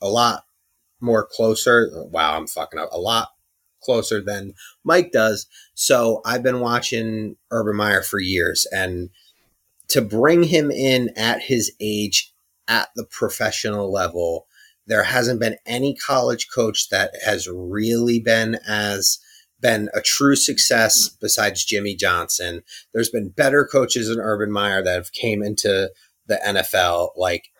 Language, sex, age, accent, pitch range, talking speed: English, male, 30-49, American, 105-130 Hz, 145 wpm